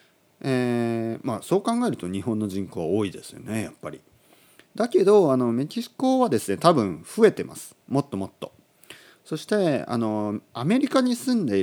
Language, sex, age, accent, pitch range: Japanese, male, 40-59, native, 95-160 Hz